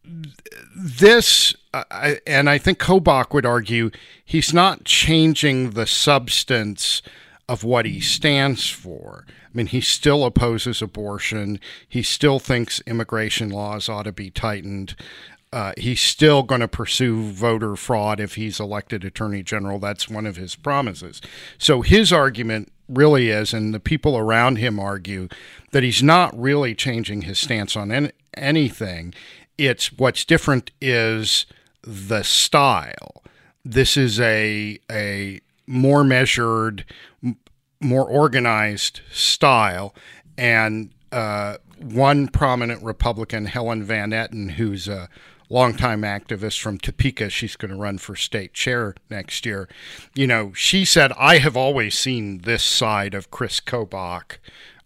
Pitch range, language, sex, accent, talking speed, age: 105-135 Hz, English, male, American, 135 wpm, 50-69